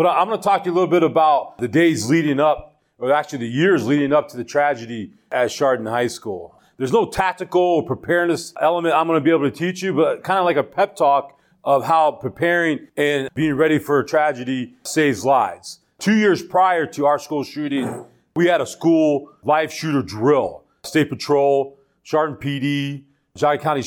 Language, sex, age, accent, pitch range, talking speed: English, male, 40-59, American, 140-165 Hz, 200 wpm